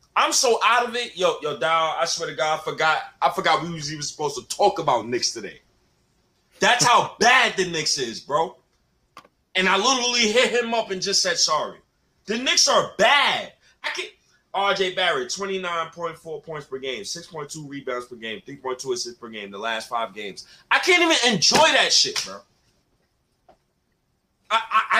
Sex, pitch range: male, 155-245 Hz